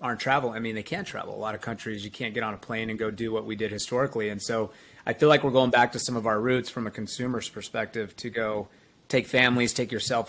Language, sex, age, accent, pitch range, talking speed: English, male, 30-49, American, 110-125 Hz, 280 wpm